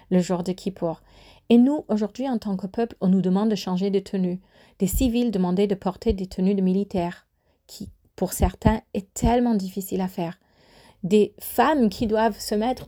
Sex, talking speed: female, 190 wpm